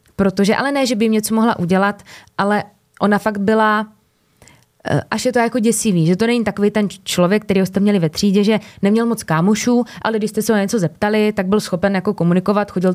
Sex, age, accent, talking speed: female, 20-39, native, 215 wpm